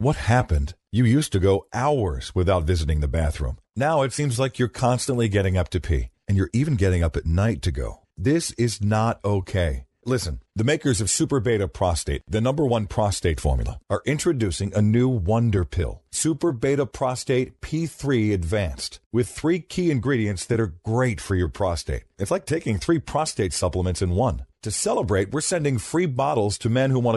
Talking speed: 190 wpm